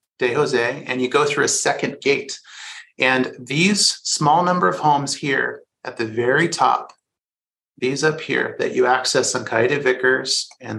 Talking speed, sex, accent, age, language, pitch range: 165 wpm, male, American, 30-49, English, 120-150 Hz